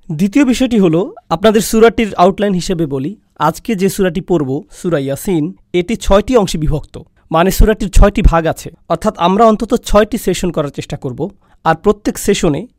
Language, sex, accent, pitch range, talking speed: Bengali, male, native, 160-210 Hz, 160 wpm